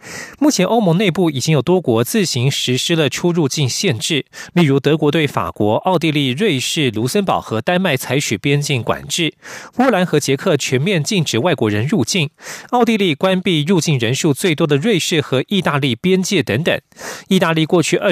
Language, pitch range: German, 135-180 Hz